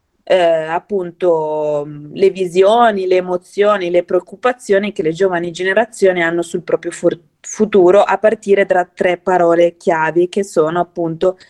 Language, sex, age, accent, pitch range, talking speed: Italian, female, 20-39, native, 165-200 Hz, 130 wpm